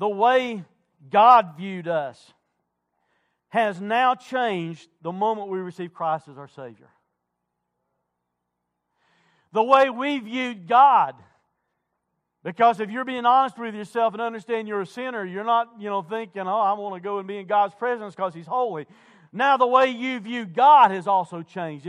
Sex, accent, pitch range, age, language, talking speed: male, American, 160-250 Hz, 50-69, English, 160 wpm